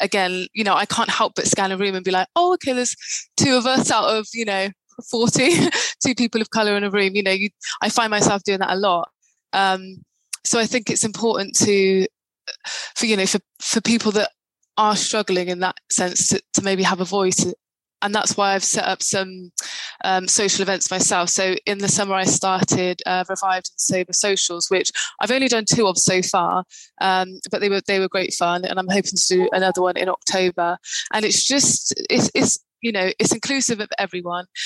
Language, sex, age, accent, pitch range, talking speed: English, female, 20-39, British, 185-215 Hz, 215 wpm